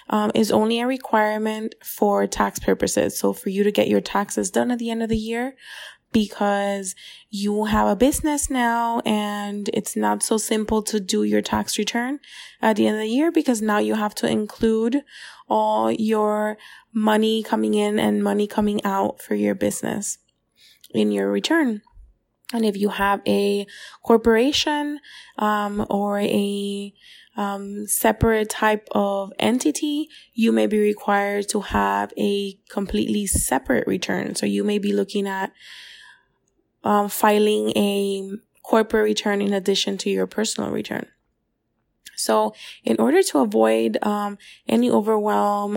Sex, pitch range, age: female, 195-225 Hz, 20-39